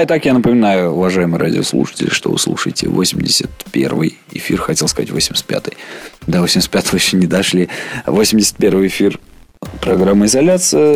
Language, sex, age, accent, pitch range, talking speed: Russian, male, 20-39, native, 95-130 Hz, 120 wpm